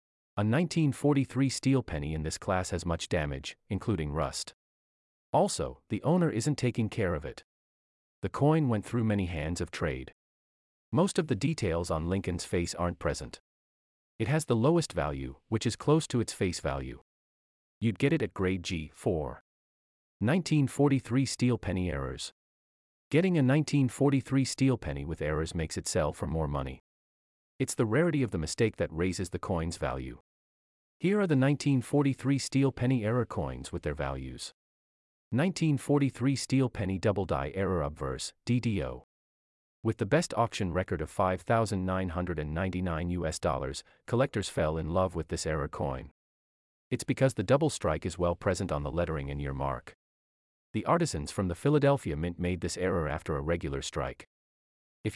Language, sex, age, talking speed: English, male, 30-49, 160 wpm